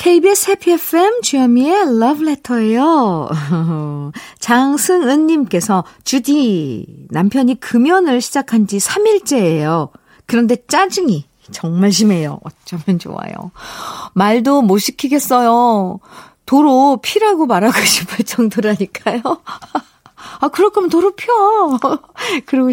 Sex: female